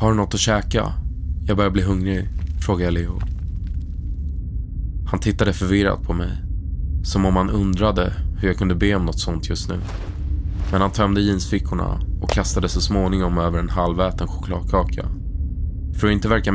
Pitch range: 80-95 Hz